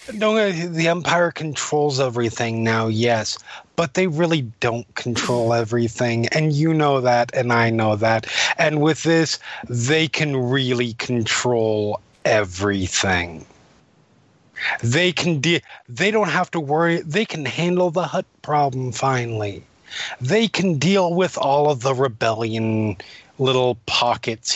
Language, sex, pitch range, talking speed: English, male, 120-160 Hz, 130 wpm